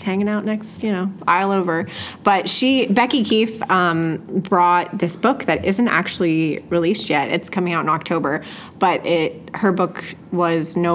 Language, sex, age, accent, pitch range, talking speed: English, female, 30-49, American, 165-200 Hz, 170 wpm